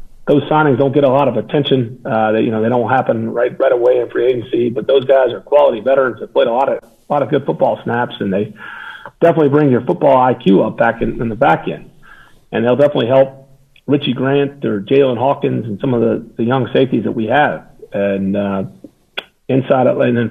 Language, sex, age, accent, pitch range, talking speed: English, male, 50-69, American, 120-140 Hz, 225 wpm